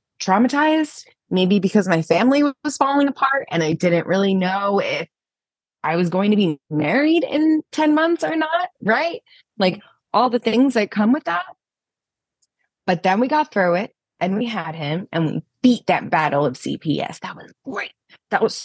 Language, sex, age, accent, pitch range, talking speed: English, female, 20-39, American, 170-250 Hz, 180 wpm